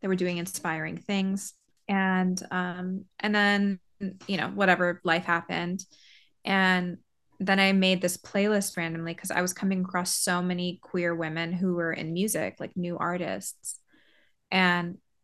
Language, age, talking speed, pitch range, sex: English, 20-39, 150 wpm, 175-195 Hz, female